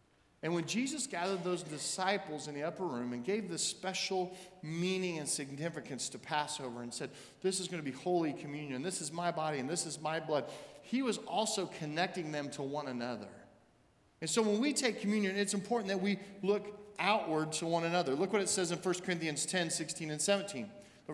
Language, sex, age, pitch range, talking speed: English, male, 40-59, 160-215 Hz, 205 wpm